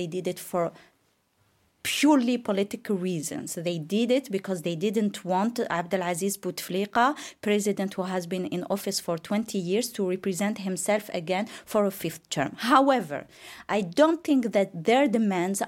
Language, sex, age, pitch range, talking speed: English, female, 30-49, 190-245 Hz, 155 wpm